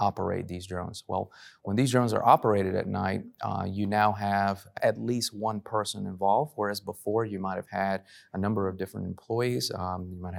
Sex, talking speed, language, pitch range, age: male, 190 wpm, English, 95-115 Hz, 30-49